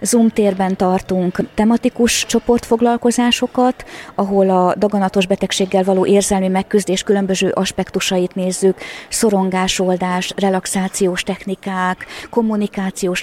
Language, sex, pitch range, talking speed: Hungarian, female, 185-205 Hz, 85 wpm